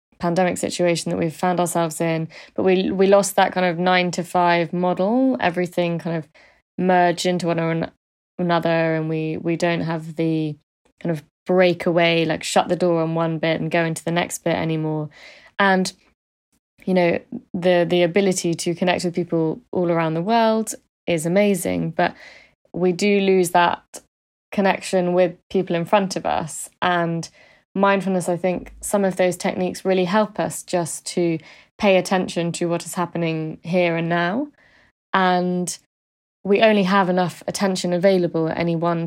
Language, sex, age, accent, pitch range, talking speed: English, female, 20-39, British, 165-185 Hz, 170 wpm